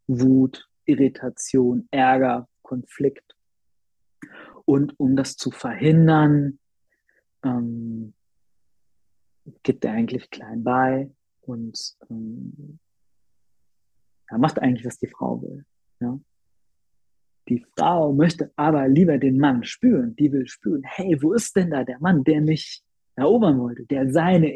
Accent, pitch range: German, 125-155 Hz